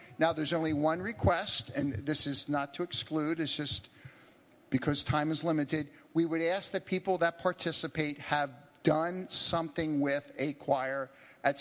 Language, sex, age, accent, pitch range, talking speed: English, male, 50-69, American, 140-175 Hz, 160 wpm